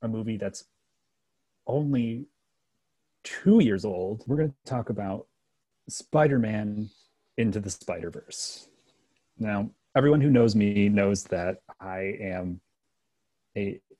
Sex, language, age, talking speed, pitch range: male, English, 30-49, 110 wpm, 100-120 Hz